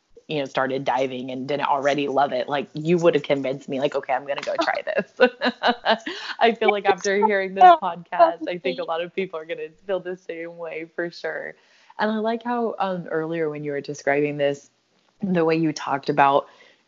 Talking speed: 215 wpm